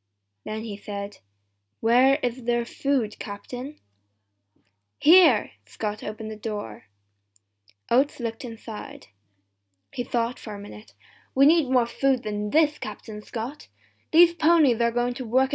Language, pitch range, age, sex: Chinese, 210-275 Hz, 10-29, female